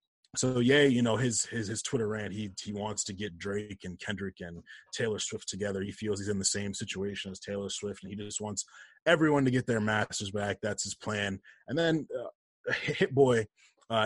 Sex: male